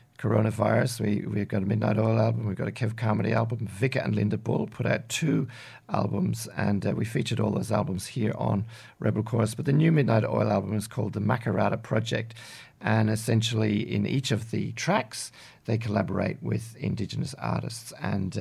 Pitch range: 110-125 Hz